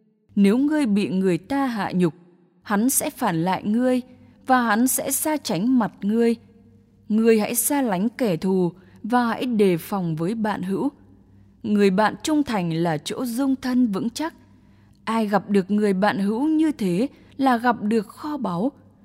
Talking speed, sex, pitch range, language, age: 175 wpm, female, 180-250 Hz, English, 20-39